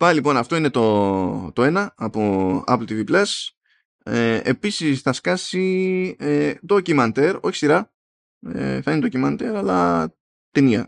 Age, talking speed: 20-39, 140 wpm